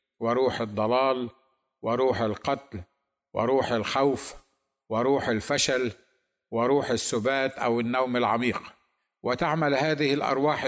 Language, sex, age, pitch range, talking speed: Arabic, male, 50-69, 120-135 Hz, 90 wpm